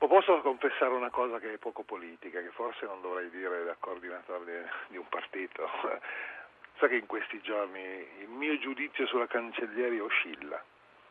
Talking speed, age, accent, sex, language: 155 wpm, 40-59, native, male, Italian